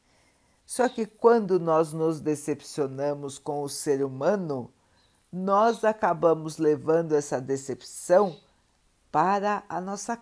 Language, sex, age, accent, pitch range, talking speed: Portuguese, female, 50-69, Brazilian, 145-195 Hz, 105 wpm